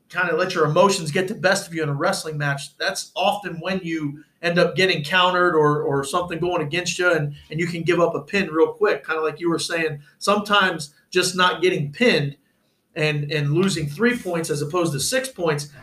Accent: American